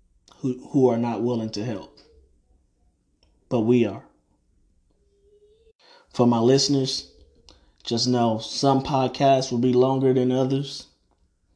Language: English